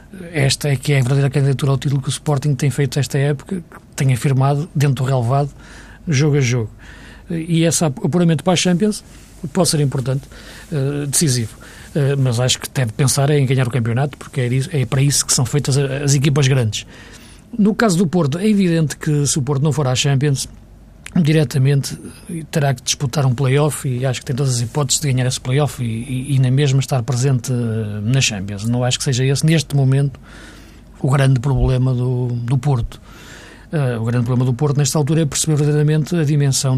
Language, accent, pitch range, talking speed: Portuguese, Portuguese, 125-150 Hz, 195 wpm